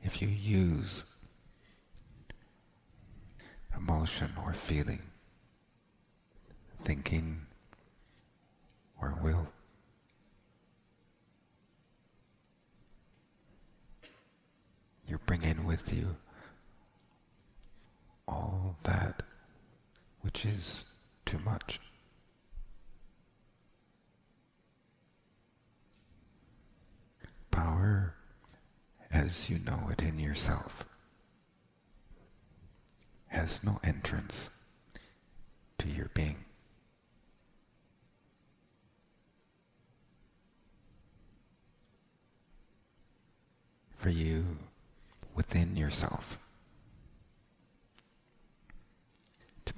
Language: English